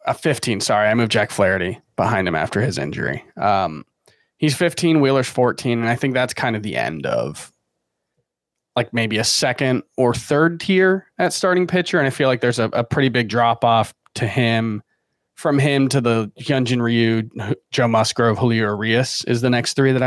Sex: male